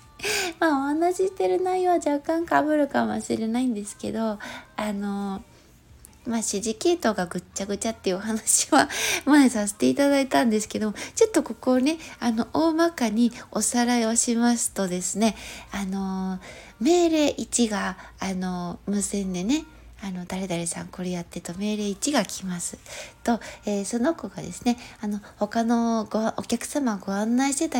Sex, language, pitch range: female, Japanese, 205-285 Hz